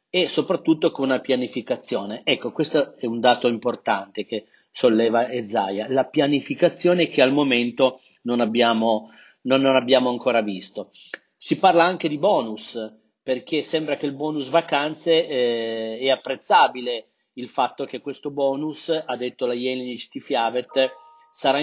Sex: male